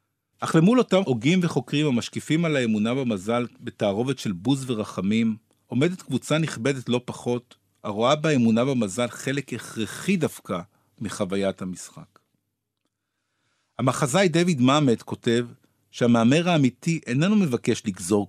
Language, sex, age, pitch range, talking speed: Hebrew, male, 50-69, 110-150 Hz, 115 wpm